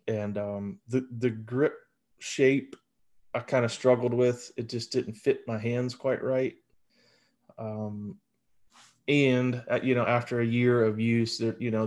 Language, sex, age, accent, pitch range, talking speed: English, male, 30-49, American, 105-120 Hz, 160 wpm